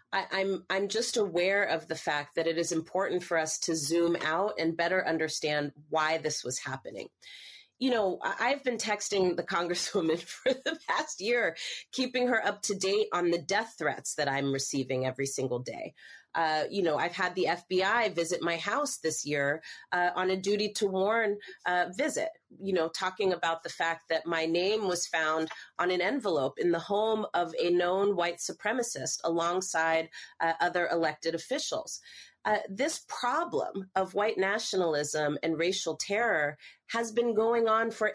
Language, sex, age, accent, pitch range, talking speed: English, female, 30-49, American, 165-215 Hz, 170 wpm